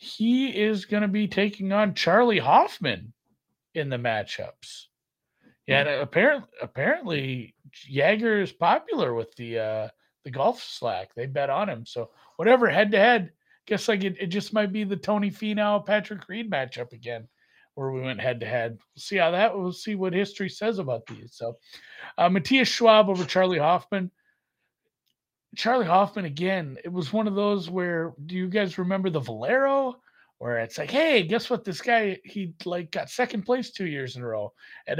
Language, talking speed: English, 180 wpm